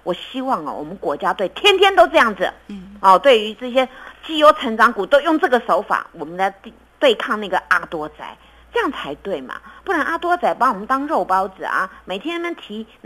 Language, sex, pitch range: Chinese, female, 185-280 Hz